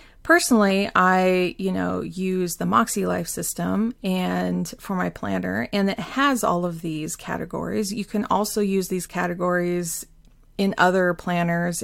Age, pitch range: 30-49, 180-215 Hz